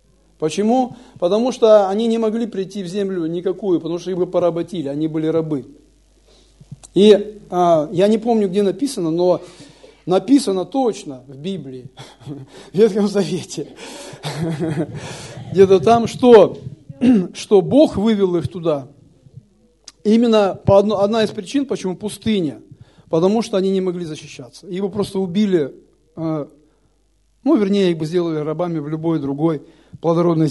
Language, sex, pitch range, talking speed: Russian, male, 160-215 Hz, 130 wpm